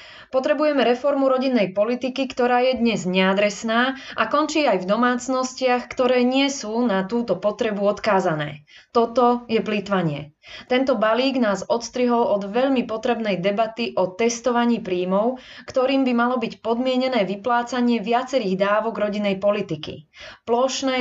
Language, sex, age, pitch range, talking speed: Slovak, female, 20-39, 200-250 Hz, 130 wpm